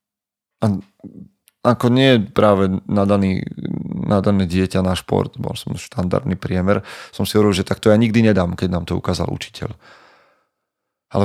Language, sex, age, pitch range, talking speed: Slovak, male, 30-49, 95-115 Hz, 145 wpm